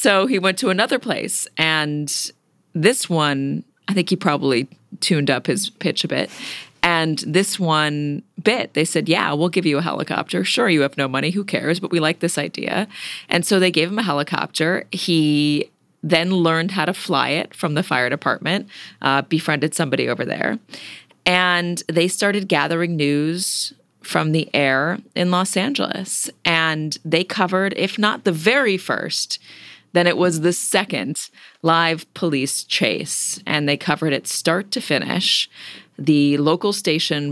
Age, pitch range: 30-49, 150-185 Hz